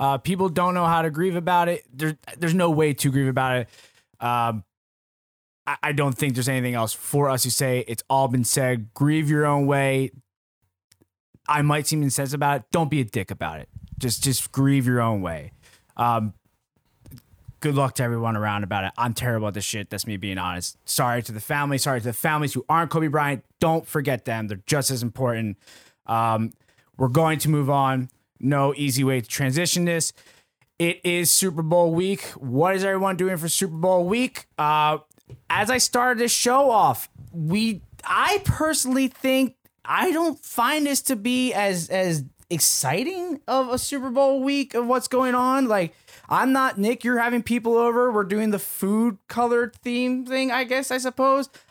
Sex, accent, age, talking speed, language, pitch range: male, American, 20-39, 190 wpm, English, 125-205 Hz